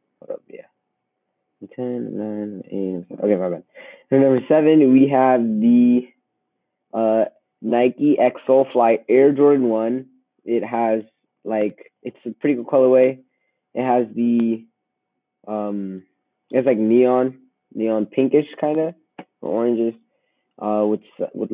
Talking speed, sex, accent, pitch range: 130 wpm, male, American, 105-130 Hz